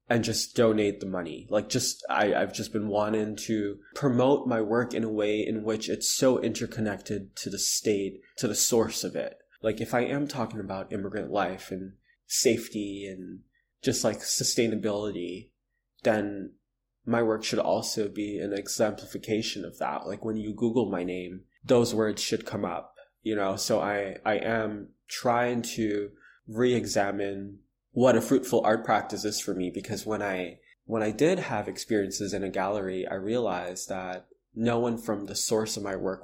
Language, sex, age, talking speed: English, male, 20-39, 175 wpm